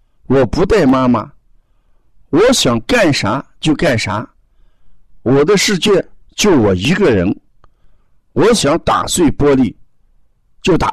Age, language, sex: 50-69, Chinese, male